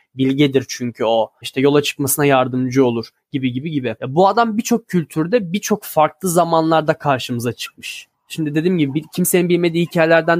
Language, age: Turkish, 10-29